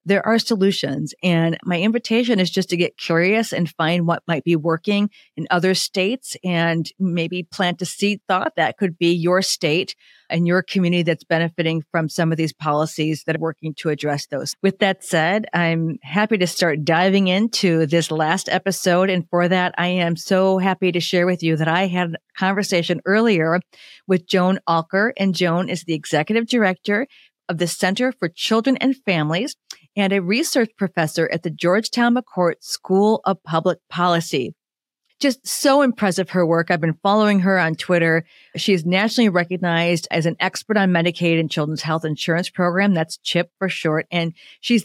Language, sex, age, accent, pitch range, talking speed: English, female, 50-69, American, 165-195 Hz, 180 wpm